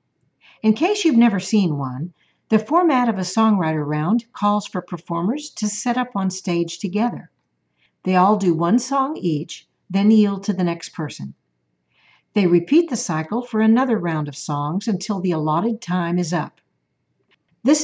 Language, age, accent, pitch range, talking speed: English, 50-69, American, 160-215 Hz, 165 wpm